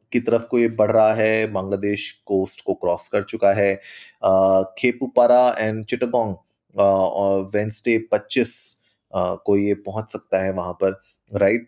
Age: 30-49